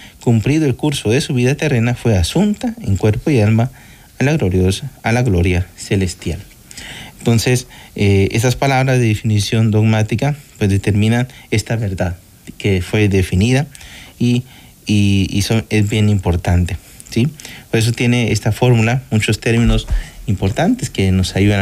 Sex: male